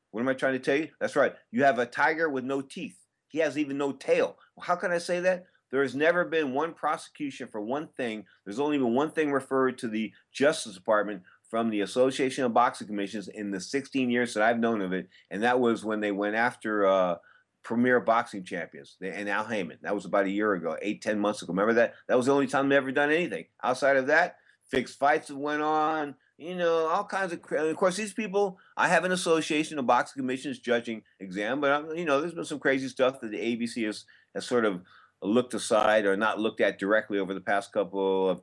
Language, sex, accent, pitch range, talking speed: English, male, American, 105-145 Hz, 235 wpm